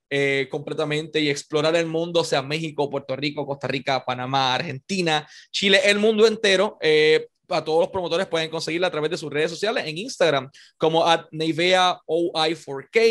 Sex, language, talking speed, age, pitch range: male, Spanish, 160 wpm, 20-39, 150-200 Hz